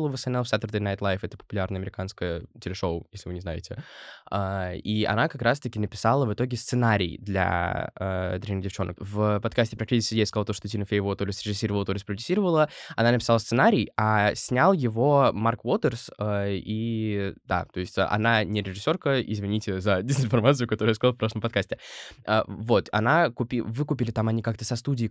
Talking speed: 175 wpm